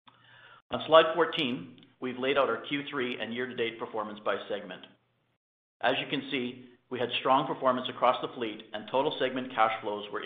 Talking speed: 175 wpm